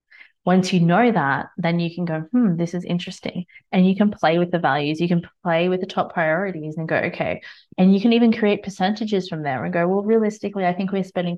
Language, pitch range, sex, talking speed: English, 165-200 Hz, female, 235 wpm